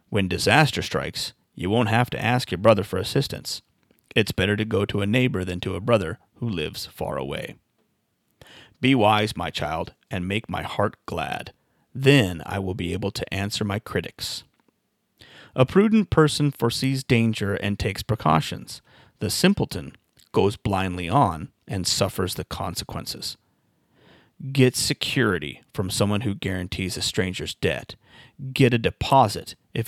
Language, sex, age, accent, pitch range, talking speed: English, male, 30-49, American, 95-125 Hz, 150 wpm